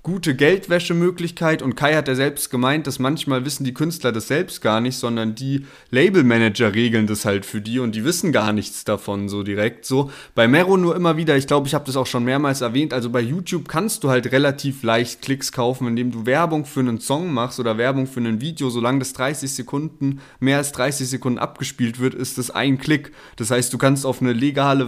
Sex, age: male, 20-39